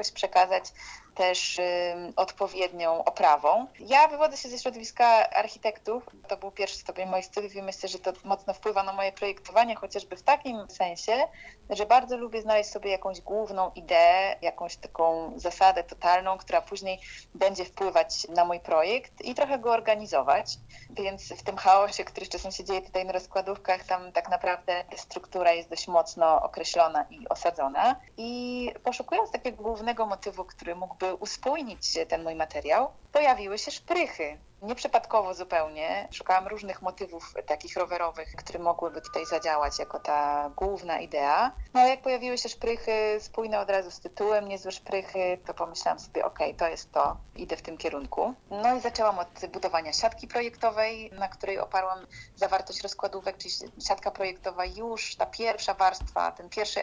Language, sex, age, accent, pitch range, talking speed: Polish, female, 30-49, native, 180-225 Hz, 155 wpm